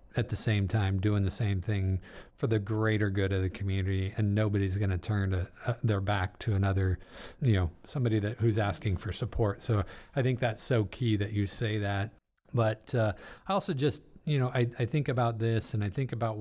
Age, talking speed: 40-59, 220 wpm